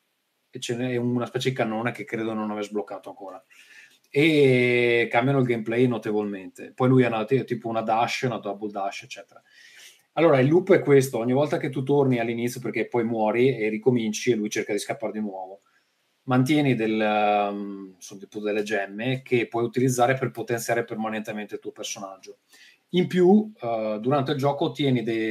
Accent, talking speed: native, 160 wpm